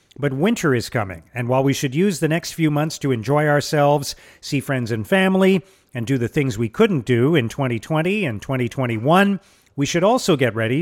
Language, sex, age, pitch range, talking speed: English, male, 40-59, 125-175 Hz, 200 wpm